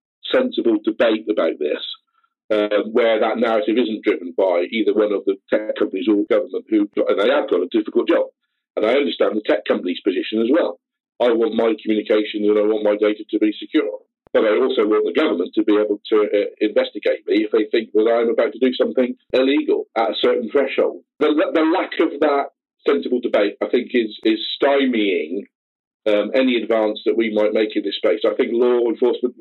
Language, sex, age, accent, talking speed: English, male, 50-69, British, 210 wpm